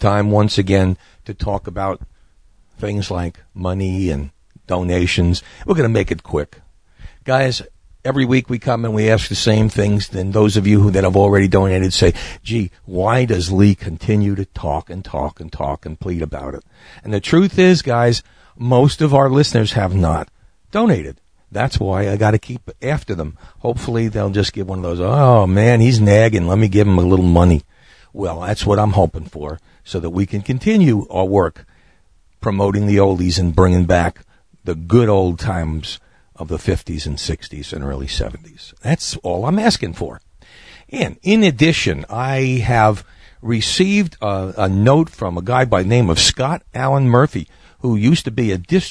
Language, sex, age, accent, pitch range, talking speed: English, male, 60-79, American, 90-120 Hz, 185 wpm